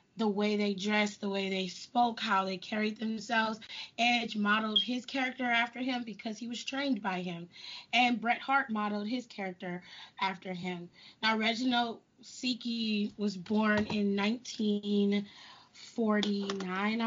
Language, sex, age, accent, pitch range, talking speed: English, female, 20-39, American, 200-235 Hz, 135 wpm